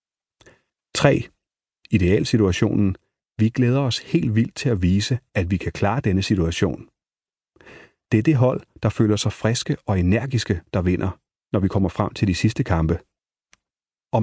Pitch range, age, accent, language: 95-120 Hz, 30-49, native, Danish